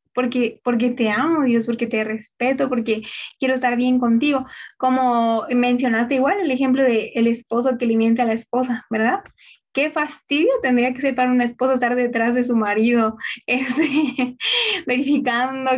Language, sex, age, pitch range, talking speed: Spanish, female, 20-39, 230-265 Hz, 160 wpm